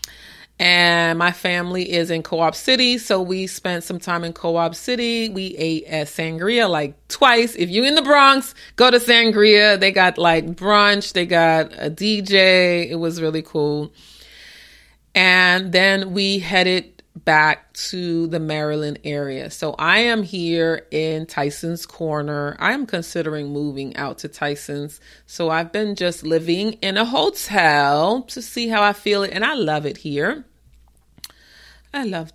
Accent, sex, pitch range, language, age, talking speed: American, female, 160-205 Hz, English, 30-49, 155 wpm